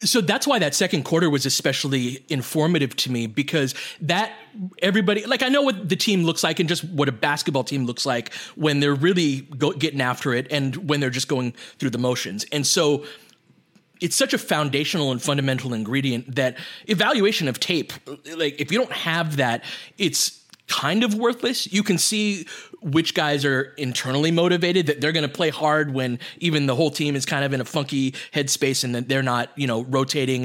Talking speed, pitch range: 195 wpm, 135-180 Hz